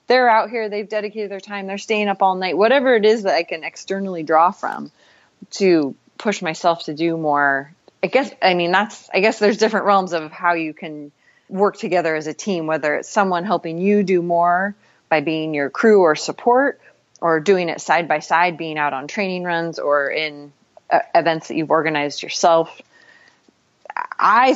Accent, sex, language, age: American, female, English, 30-49